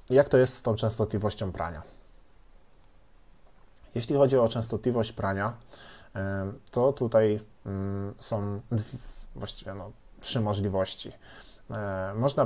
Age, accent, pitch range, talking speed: 20-39, native, 100-115 Hz, 90 wpm